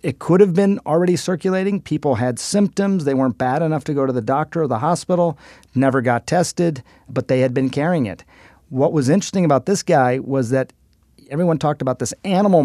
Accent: American